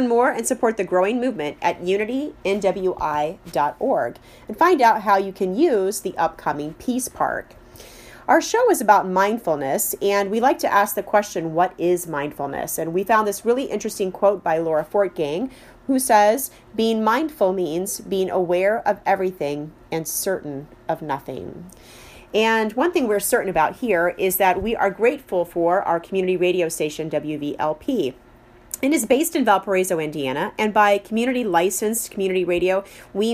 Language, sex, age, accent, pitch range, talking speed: English, female, 30-49, American, 170-225 Hz, 155 wpm